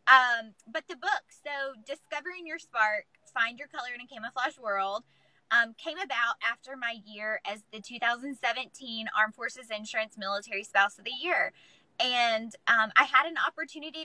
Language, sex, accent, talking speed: English, female, American, 160 wpm